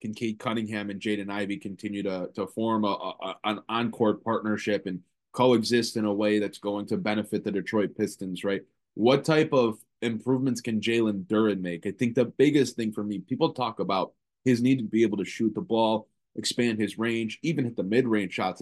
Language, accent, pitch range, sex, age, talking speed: English, American, 105-125 Hz, male, 20-39, 205 wpm